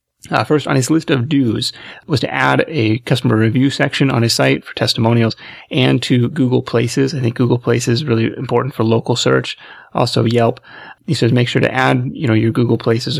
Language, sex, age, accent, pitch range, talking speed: English, male, 30-49, American, 115-135 Hz, 210 wpm